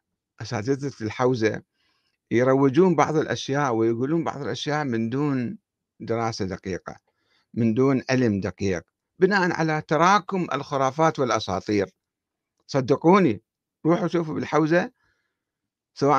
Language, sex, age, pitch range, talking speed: Arabic, male, 60-79, 115-165 Hz, 95 wpm